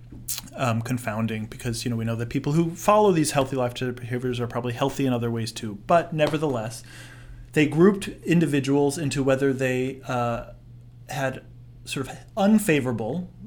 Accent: American